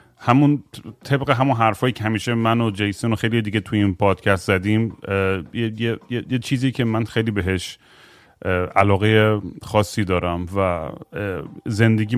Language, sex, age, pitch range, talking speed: Persian, male, 30-49, 105-125 Hz, 150 wpm